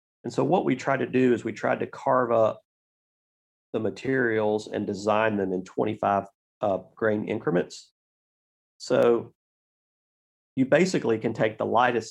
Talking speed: 150 wpm